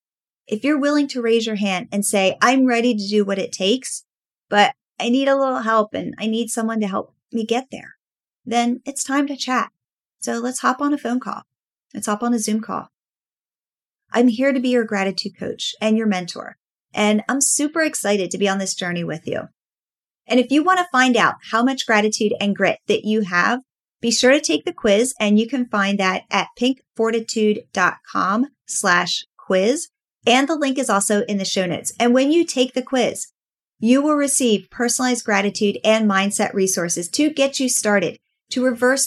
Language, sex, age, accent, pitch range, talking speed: English, female, 30-49, American, 205-255 Hz, 195 wpm